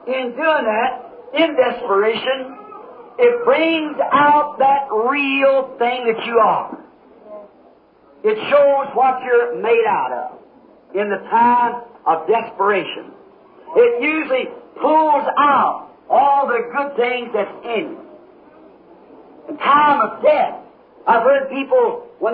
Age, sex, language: 50-69, male, English